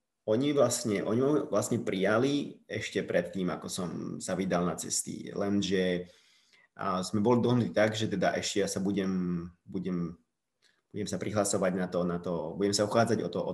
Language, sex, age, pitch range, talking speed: Slovak, male, 30-49, 95-110 Hz, 170 wpm